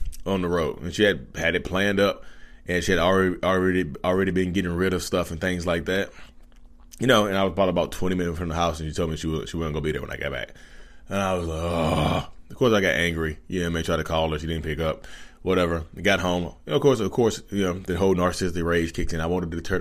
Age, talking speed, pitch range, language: 20-39, 285 wpm, 80-100 Hz, English